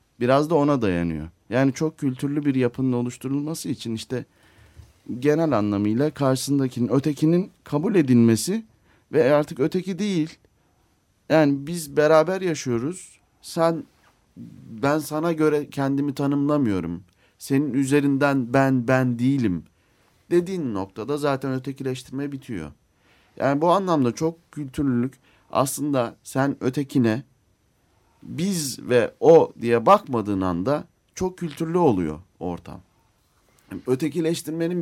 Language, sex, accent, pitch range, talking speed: Turkish, male, native, 95-145 Hz, 105 wpm